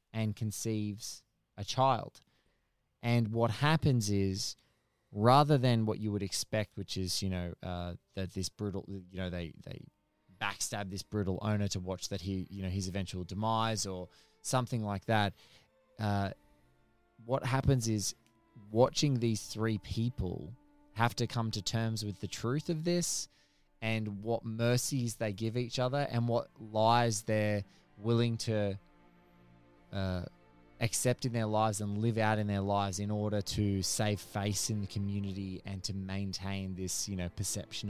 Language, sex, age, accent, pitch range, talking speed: English, male, 20-39, Australian, 100-115 Hz, 160 wpm